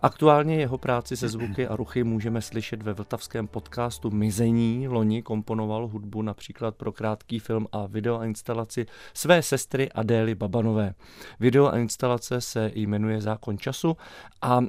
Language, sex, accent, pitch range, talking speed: Czech, male, native, 105-120 Hz, 145 wpm